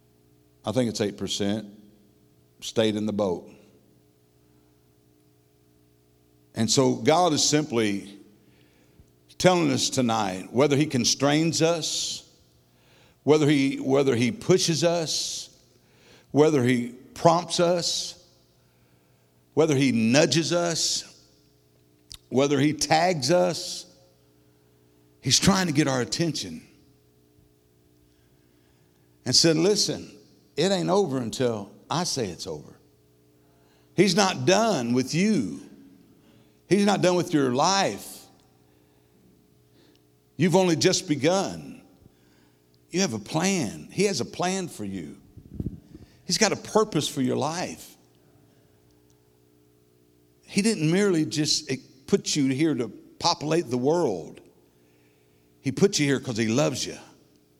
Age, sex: 60-79, male